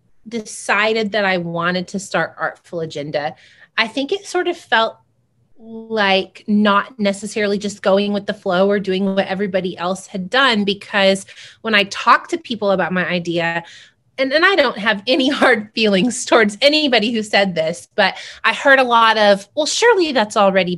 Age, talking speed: 30-49, 175 wpm